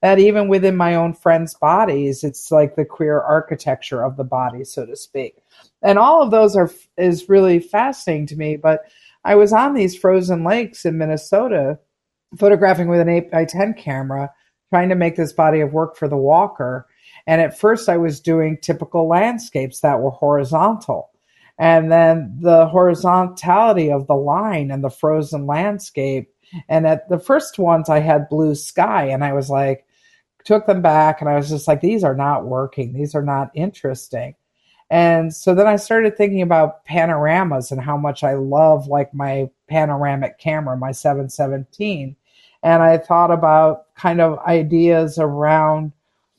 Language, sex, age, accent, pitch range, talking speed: English, female, 50-69, American, 145-180 Hz, 170 wpm